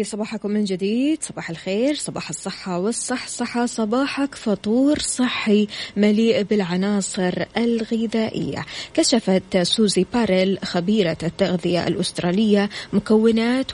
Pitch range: 185-235 Hz